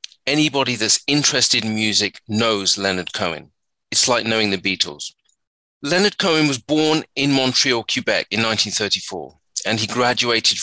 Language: English